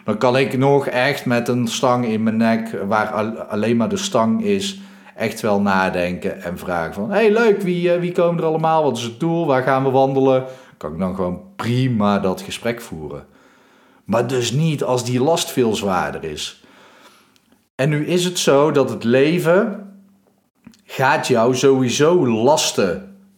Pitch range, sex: 110-170 Hz, male